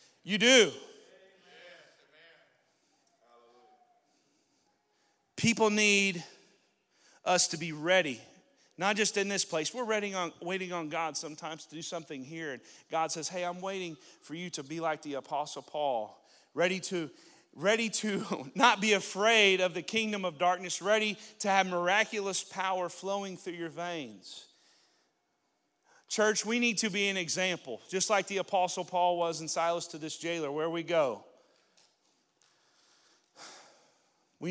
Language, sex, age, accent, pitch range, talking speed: English, male, 40-59, American, 165-205 Hz, 140 wpm